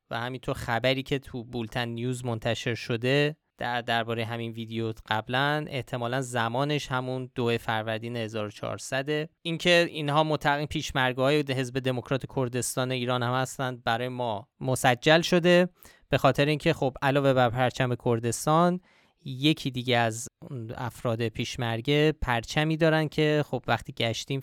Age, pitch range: 20-39, 120-145 Hz